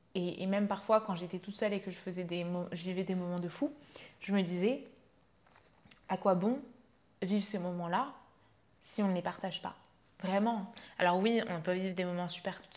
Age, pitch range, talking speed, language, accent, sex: 20-39, 180-220 Hz, 200 wpm, French, French, female